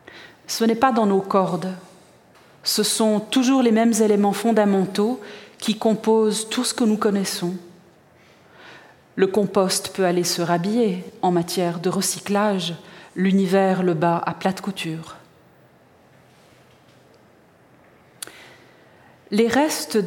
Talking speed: 115 wpm